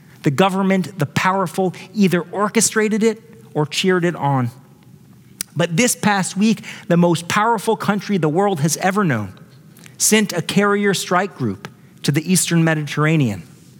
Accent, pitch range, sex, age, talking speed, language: American, 145-180 Hz, male, 40-59, 145 wpm, English